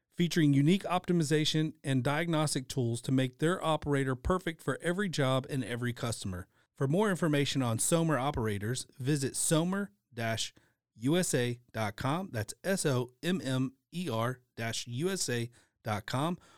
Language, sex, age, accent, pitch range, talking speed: English, male, 30-49, American, 115-145 Hz, 100 wpm